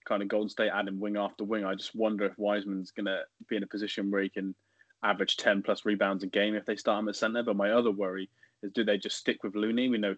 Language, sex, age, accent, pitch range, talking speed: English, male, 20-39, British, 100-115 Hz, 270 wpm